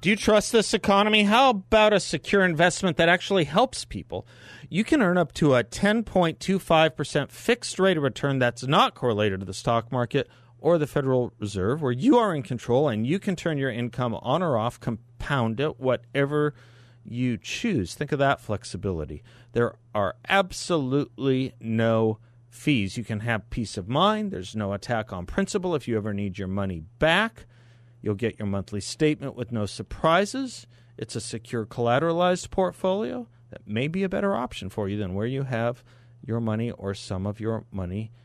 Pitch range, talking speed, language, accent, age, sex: 105-150 Hz, 180 wpm, English, American, 40-59, male